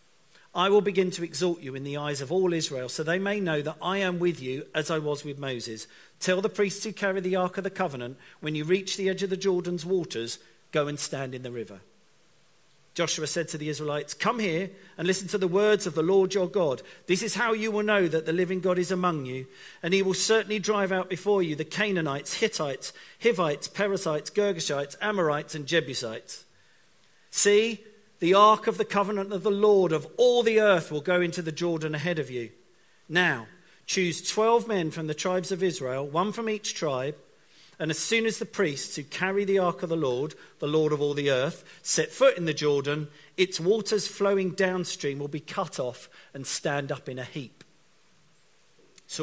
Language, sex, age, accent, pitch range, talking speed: English, male, 50-69, British, 150-195 Hz, 210 wpm